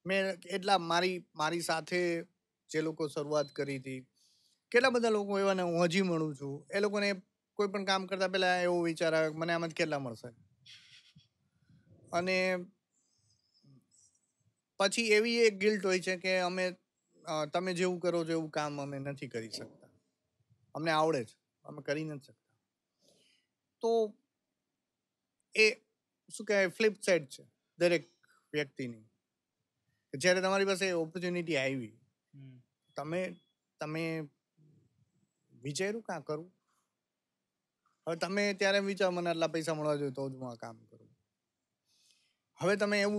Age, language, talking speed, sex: 30-49, Gujarati, 65 wpm, male